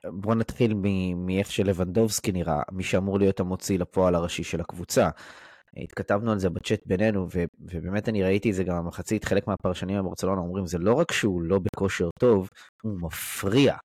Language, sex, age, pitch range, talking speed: Hebrew, male, 20-39, 95-115 Hz, 170 wpm